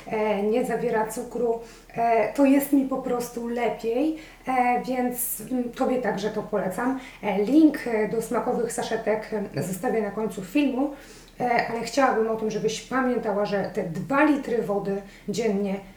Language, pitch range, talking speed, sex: Polish, 210-245 Hz, 130 wpm, female